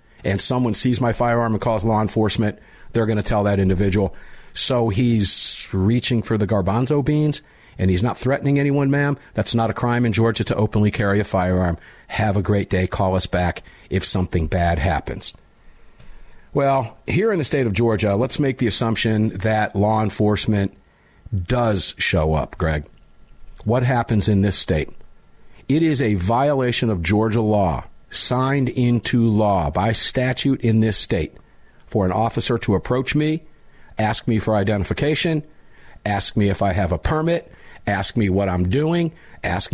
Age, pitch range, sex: 50-69, 100-135 Hz, male